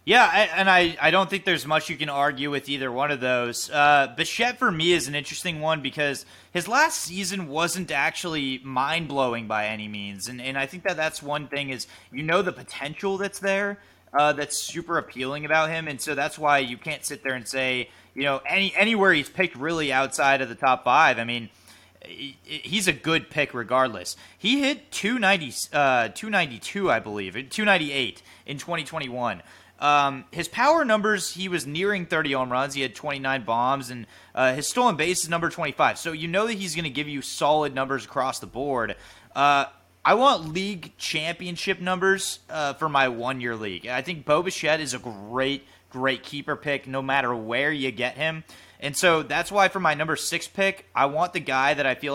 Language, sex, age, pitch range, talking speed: English, male, 30-49, 130-170 Hz, 205 wpm